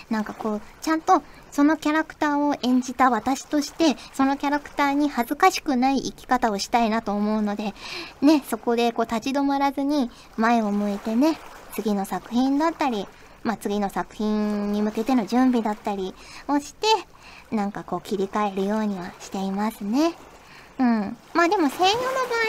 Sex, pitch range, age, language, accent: male, 210-280 Hz, 20-39, Japanese, native